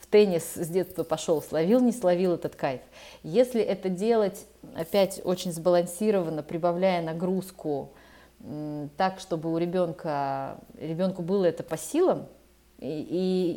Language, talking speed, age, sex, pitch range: Russian, 120 wpm, 30-49, female, 165-230 Hz